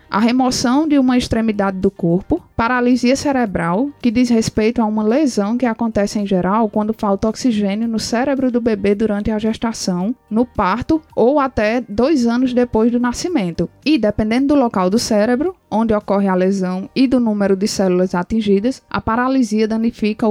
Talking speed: 170 wpm